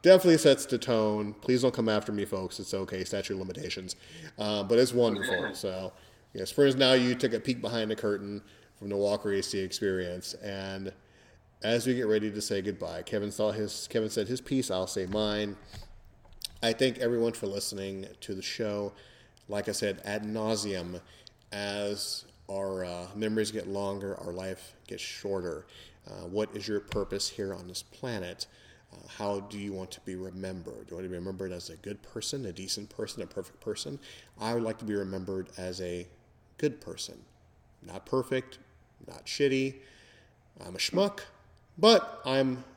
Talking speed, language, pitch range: 175 wpm, English, 95-115 Hz